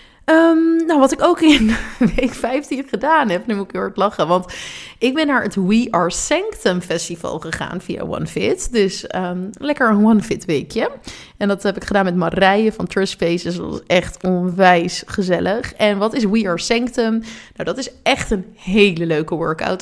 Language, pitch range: Dutch, 185-240 Hz